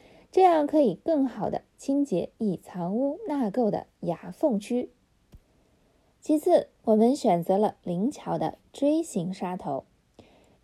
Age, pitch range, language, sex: 20-39, 200-295 Hz, Chinese, female